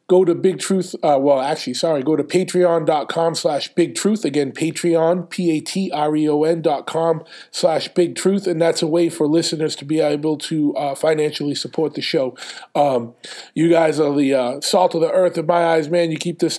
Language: English